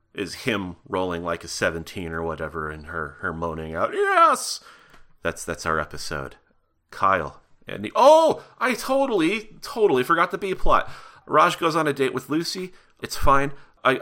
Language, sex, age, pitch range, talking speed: English, male, 30-49, 95-140 Hz, 165 wpm